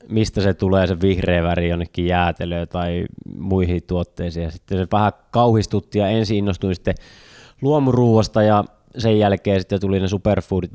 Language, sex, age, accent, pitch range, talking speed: Finnish, male, 20-39, native, 90-105 Hz, 145 wpm